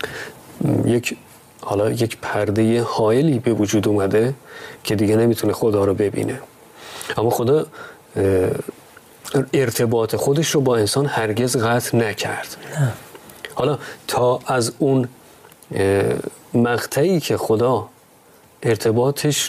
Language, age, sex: Persian, 30-49, male